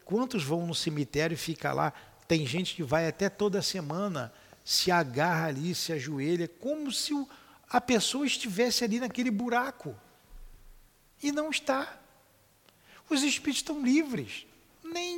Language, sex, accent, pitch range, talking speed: Portuguese, male, Brazilian, 150-230 Hz, 140 wpm